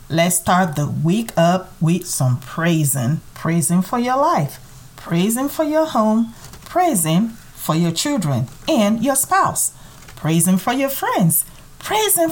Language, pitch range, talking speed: English, 155-225 Hz, 135 wpm